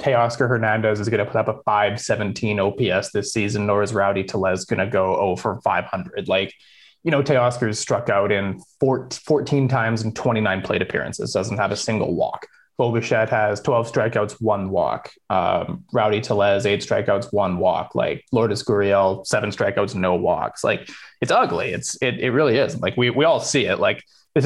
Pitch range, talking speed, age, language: 105-130 Hz, 190 wpm, 20-39, English